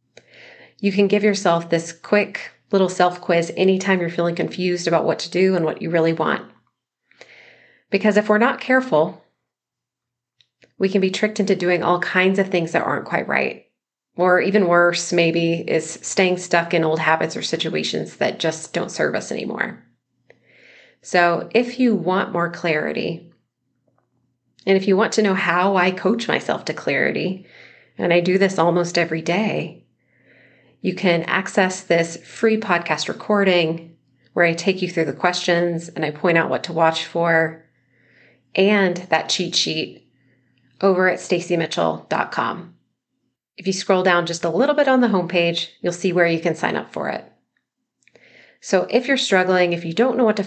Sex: female